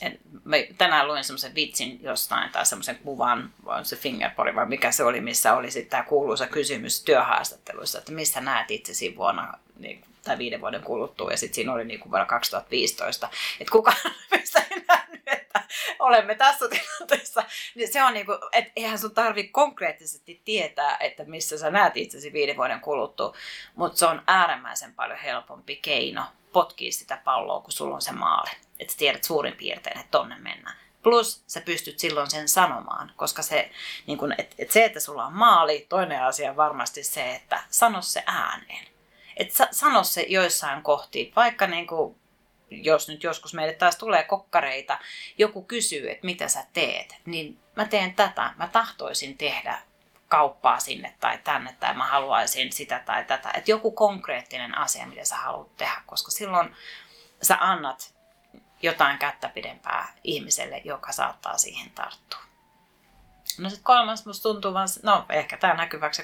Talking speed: 165 wpm